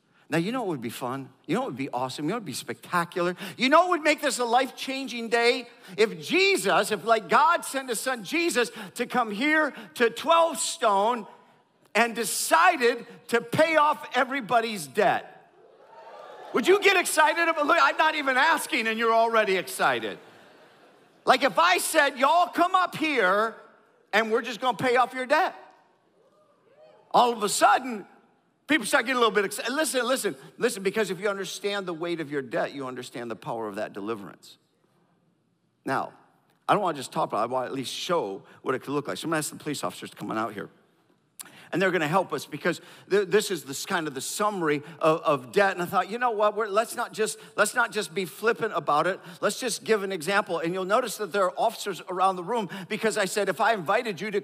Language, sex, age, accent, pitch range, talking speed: English, male, 50-69, American, 185-260 Hz, 215 wpm